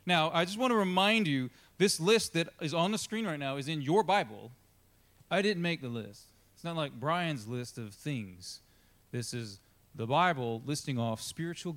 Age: 30-49